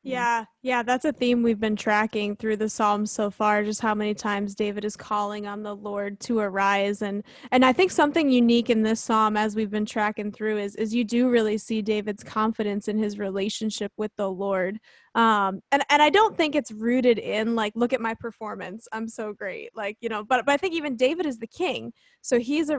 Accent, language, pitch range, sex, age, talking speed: American, English, 215-255 Hz, female, 20-39, 225 wpm